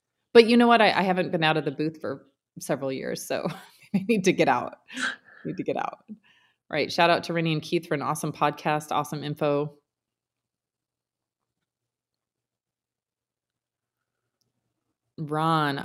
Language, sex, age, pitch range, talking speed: English, female, 30-49, 145-185 Hz, 150 wpm